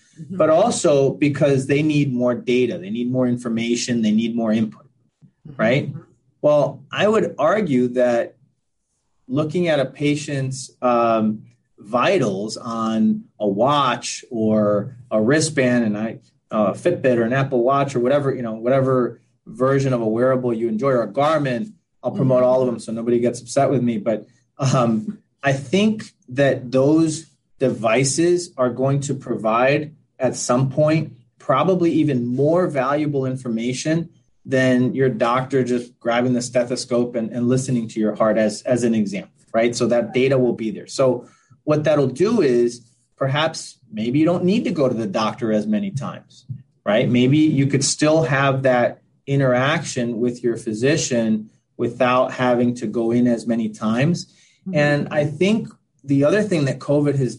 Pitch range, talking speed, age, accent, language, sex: 120-145 Hz, 160 wpm, 30-49, American, English, male